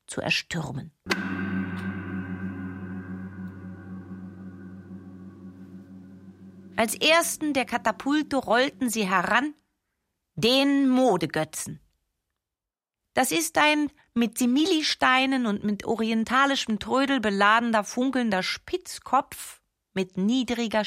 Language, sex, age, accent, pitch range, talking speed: German, female, 40-59, German, 165-260 Hz, 70 wpm